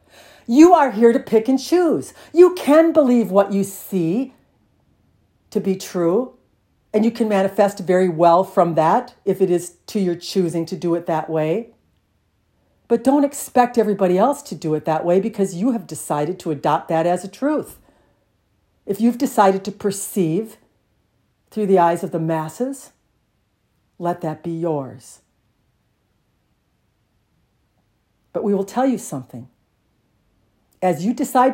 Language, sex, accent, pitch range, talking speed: English, female, American, 155-235 Hz, 150 wpm